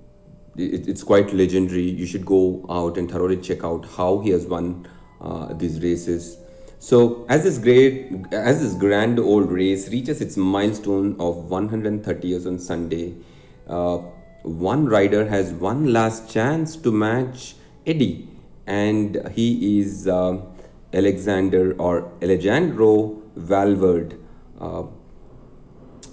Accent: Indian